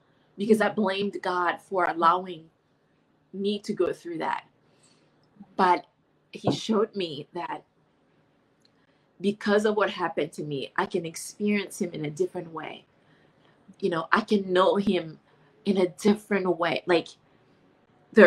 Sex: female